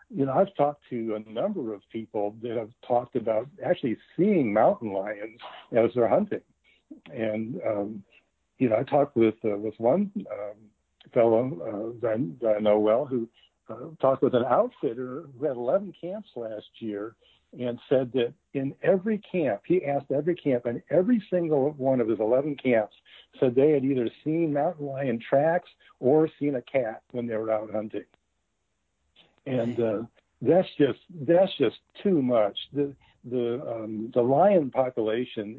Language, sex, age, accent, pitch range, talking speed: English, male, 60-79, American, 110-145 Hz, 165 wpm